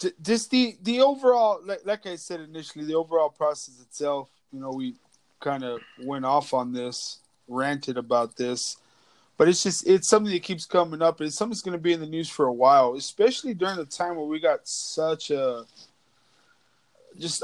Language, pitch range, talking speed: English, 135-185 Hz, 185 wpm